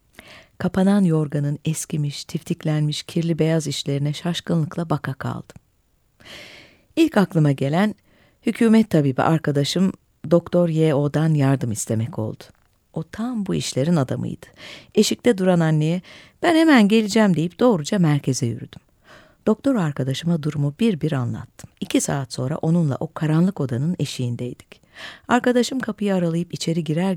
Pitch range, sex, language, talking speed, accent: 145-195 Hz, female, Turkish, 120 wpm, native